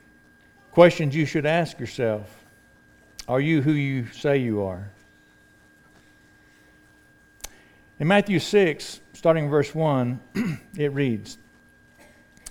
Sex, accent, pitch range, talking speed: male, American, 120-160 Hz, 95 wpm